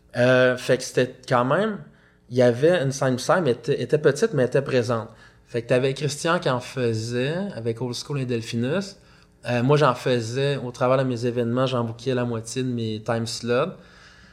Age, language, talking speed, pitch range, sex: 20-39, French, 200 wpm, 115-135 Hz, male